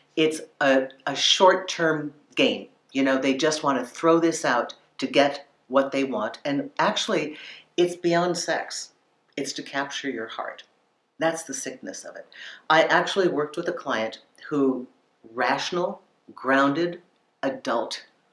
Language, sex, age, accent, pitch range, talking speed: English, female, 50-69, American, 135-175 Hz, 145 wpm